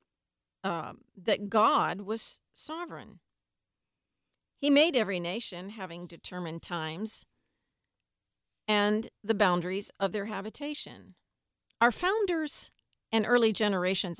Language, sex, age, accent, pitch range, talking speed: English, female, 50-69, American, 175-230 Hz, 95 wpm